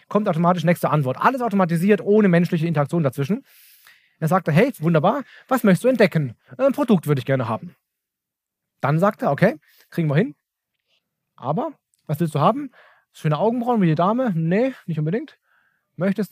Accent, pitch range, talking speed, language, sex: German, 160-210 Hz, 165 wpm, German, male